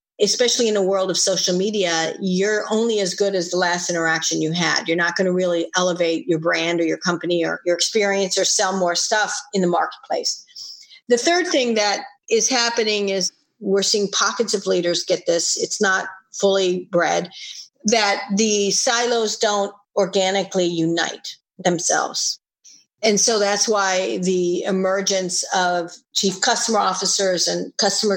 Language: English